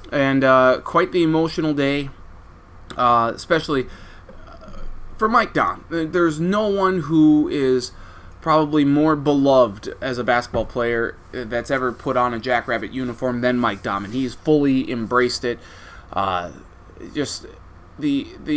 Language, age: English, 20-39